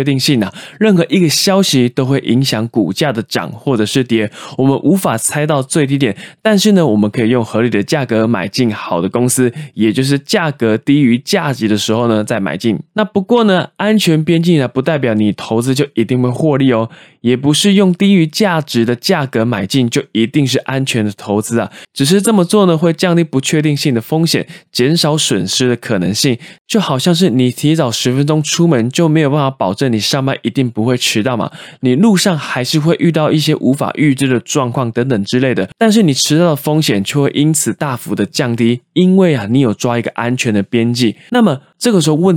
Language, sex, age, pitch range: Chinese, male, 20-39, 120-165 Hz